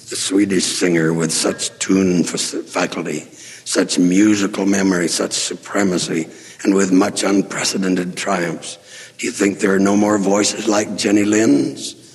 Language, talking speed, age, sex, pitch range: English, 140 wpm, 60-79, male, 85-100 Hz